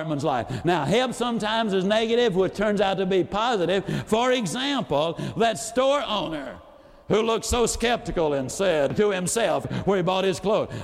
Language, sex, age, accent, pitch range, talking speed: English, male, 60-79, American, 180-225 Hz, 165 wpm